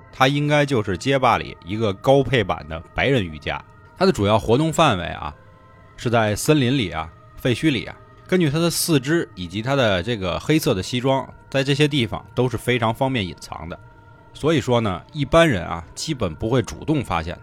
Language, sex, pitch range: Chinese, male, 95-150 Hz